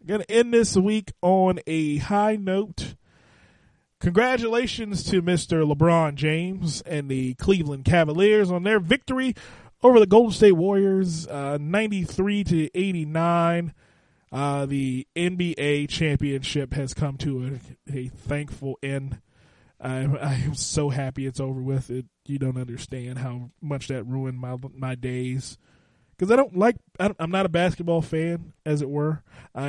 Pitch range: 135-170 Hz